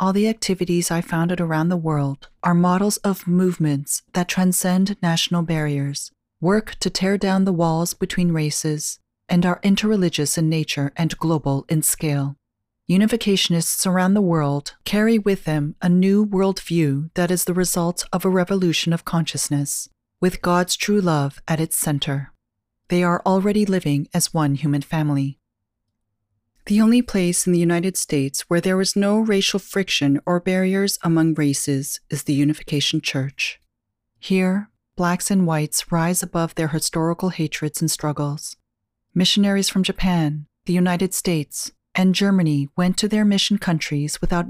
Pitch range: 145-190 Hz